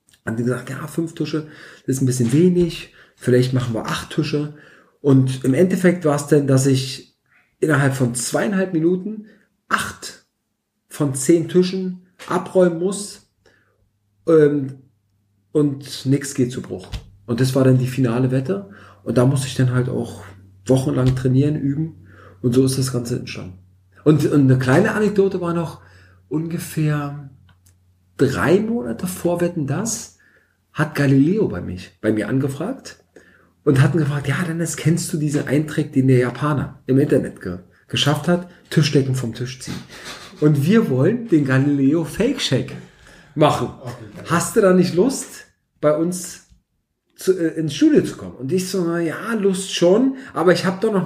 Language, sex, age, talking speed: German, male, 40-59, 160 wpm